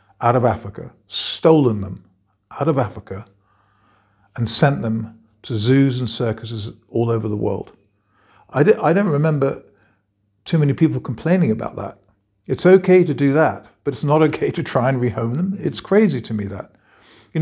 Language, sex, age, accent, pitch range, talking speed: English, male, 50-69, British, 110-160 Hz, 170 wpm